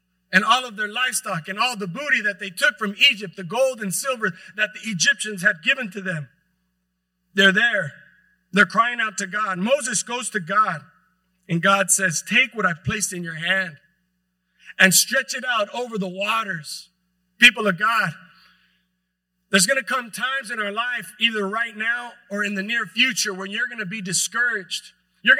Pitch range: 185-230 Hz